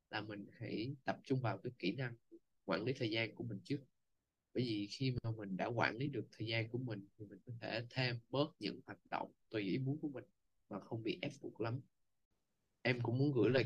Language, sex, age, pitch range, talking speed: Vietnamese, male, 20-39, 110-135 Hz, 235 wpm